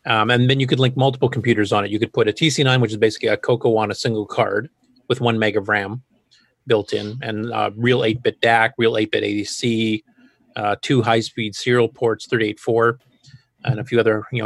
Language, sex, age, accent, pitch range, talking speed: English, male, 30-49, American, 110-130 Hz, 210 wpm